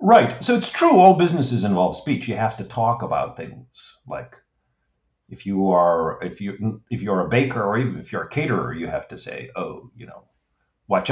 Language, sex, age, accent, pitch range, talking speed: English, male, 50-69, American, 100-130 Hz, 205 wpm